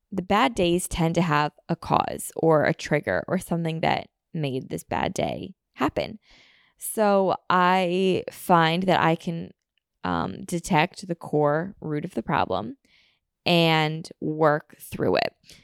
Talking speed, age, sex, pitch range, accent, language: 140 wpm, 20-39, female, 150-185 Hz, American, English